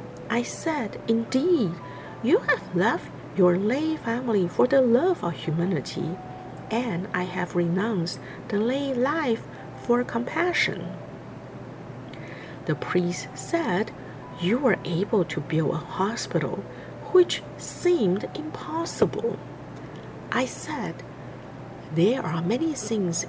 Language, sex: Chinese, female